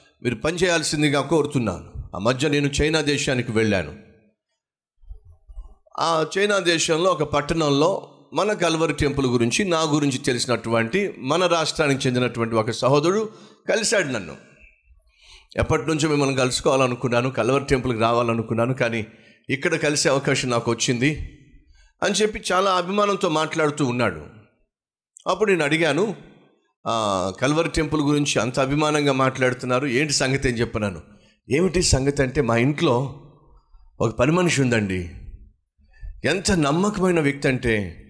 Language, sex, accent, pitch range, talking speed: Telugu, male, native, 115-155 Hz, 115 wpm